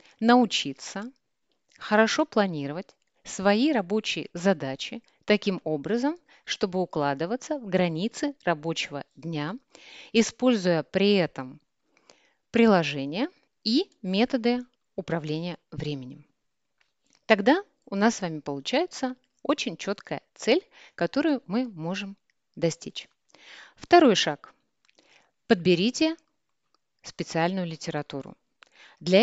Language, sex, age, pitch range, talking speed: Russian, female, 30-49, 165-250 Hz, 85 wpm